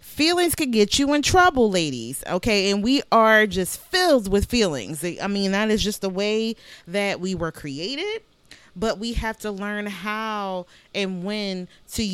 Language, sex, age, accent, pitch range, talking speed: English, female, 30-49, American, 190-240 Hz, 175 wpm